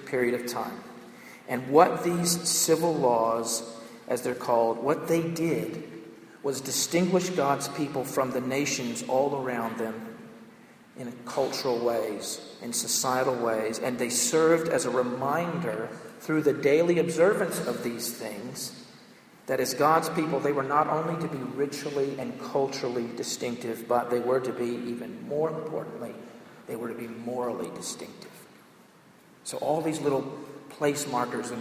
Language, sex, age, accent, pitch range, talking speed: English, male, 50-69, American, 120-145 Hz, 150 wpm